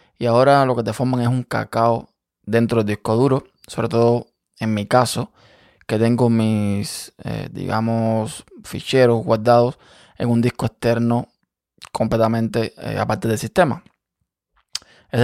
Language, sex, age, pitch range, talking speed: Spanish, male, 20-39, 115-125 Hz, 140 wpm